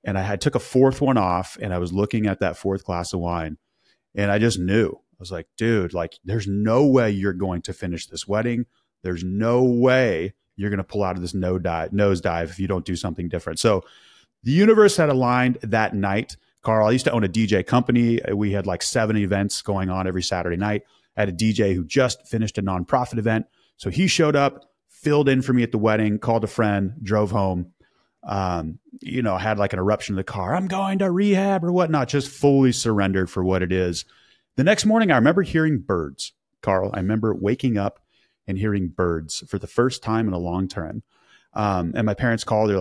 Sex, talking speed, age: male, 220 wpm, 30-49